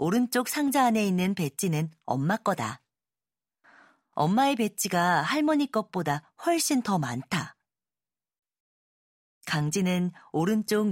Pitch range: 160-235 Hz